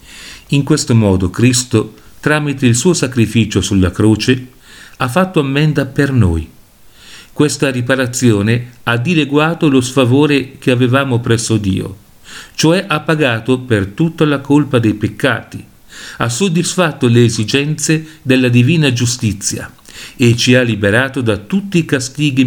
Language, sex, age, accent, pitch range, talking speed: Italian, male, 50-69, native, 115-150 Hz, 130 wpm